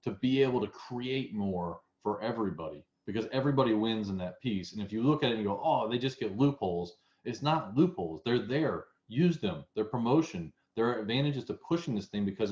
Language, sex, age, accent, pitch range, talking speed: English, male, 30-49, American, 95-115 Hz, 210 wpm